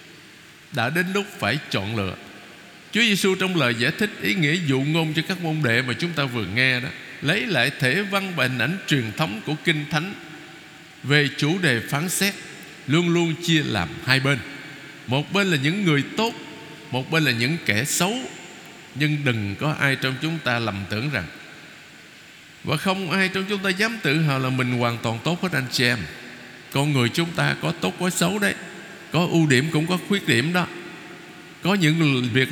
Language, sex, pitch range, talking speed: Vietnamese, male, 130-185 Hz, 200 wpm